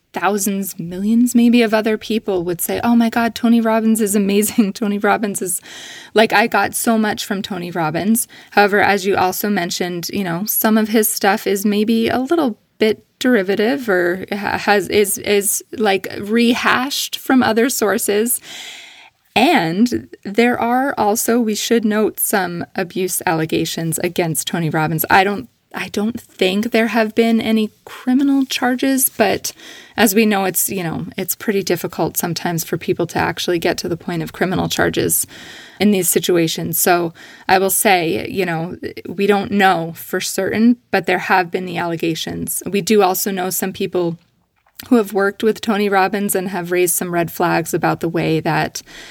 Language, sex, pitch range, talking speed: English, female, 180-225 Hz, 170 wpm